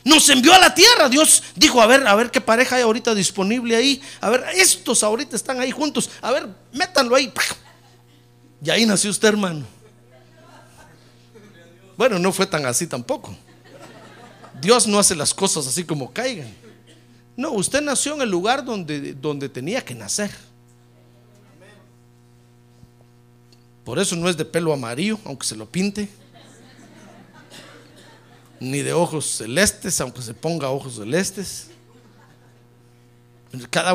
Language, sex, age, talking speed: Spanish, male, 50-69, 140 wpm